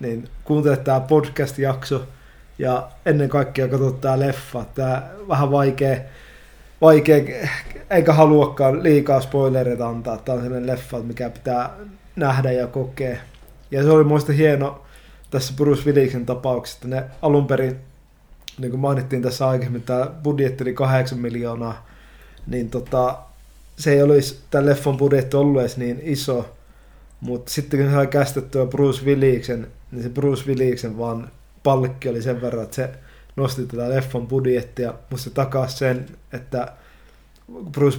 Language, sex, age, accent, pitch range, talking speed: Finnish, male, 20-39, native, 120-140 Hz, 140 wpm